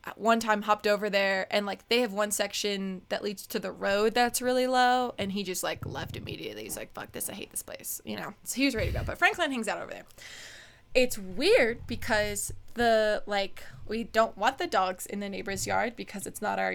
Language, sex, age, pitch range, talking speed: English, female, 20-39, 200-245 Hz, 235 wpm